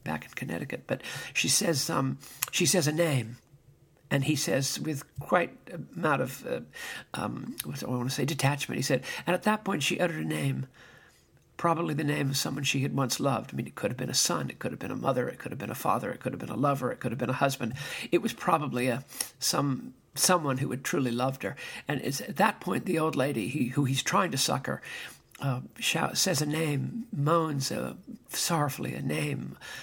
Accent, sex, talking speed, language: American, male, 225 wpm, English